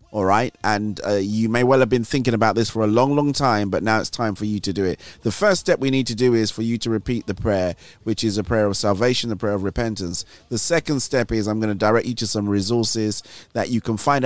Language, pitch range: English, 105-125 Hz